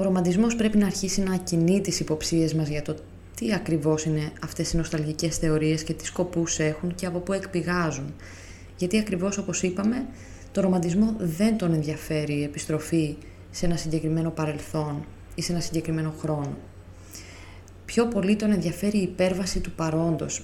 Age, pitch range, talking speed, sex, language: 20-39, 150-185 Hz, 160 wpm, female, Greek